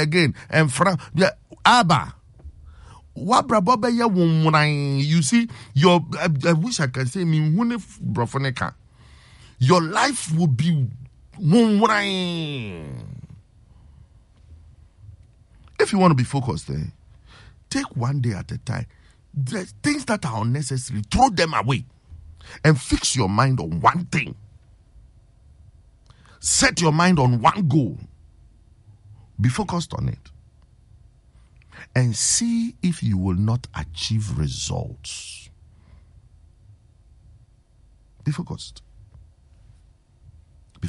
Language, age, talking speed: English, 50-69, 100 wpm